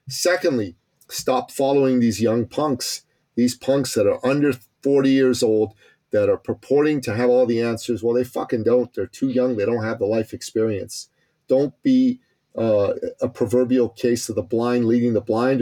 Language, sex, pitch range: English, male, 115-145 Hz